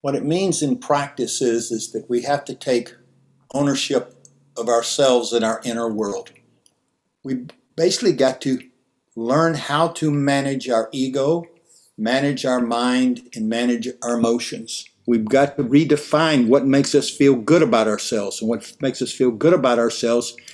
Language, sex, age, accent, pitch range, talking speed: English, male, 60-79, American, 125-160 Hz, 160 wpm